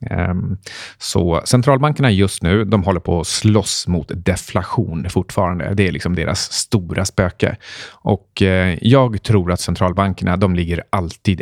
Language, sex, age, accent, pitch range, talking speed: Swedish, male, 30-49, native, 90-115 Hz, 135 wpm